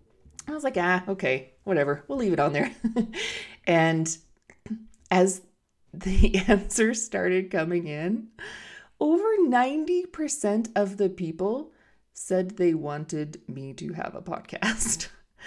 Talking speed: 120 wpm